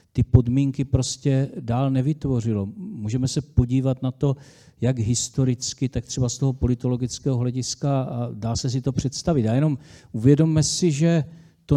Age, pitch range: 50-69, 120-135 Hz